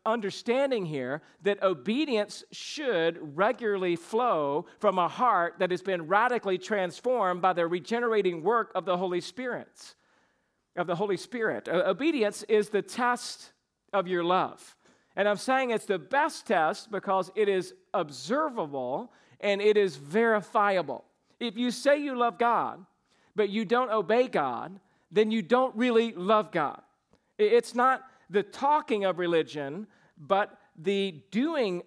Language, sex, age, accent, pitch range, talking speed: English, male, 50-69, American, 175-230 Hz, 140 wpm